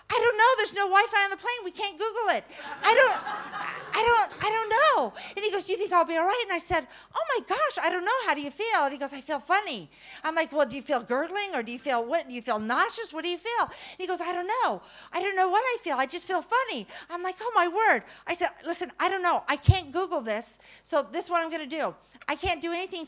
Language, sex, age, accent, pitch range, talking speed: English, female, 50-69, American, 290-395 Hz, 290 wpm